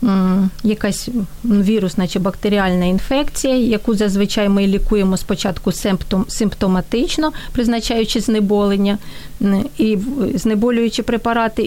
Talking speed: 80 wpm